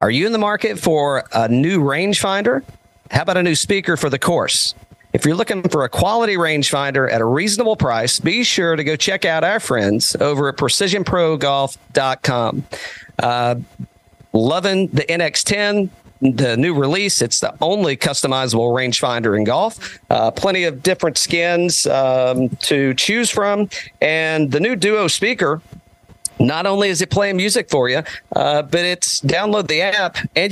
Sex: male